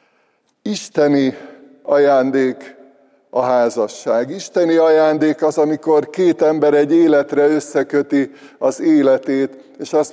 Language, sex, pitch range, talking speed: Hungarian, male, 140-165 Hz, 100 wpm